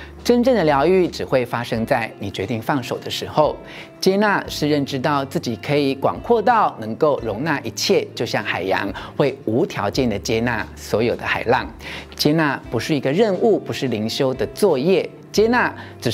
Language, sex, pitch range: Chinese, male, 120-175 Hz